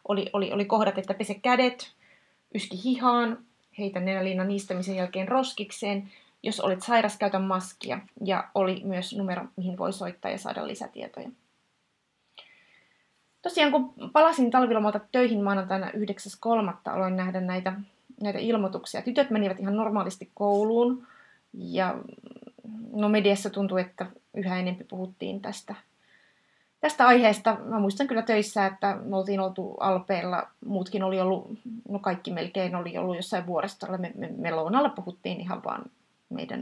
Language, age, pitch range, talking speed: Finnish, 30-49, 185-220 Hz, 140 wpm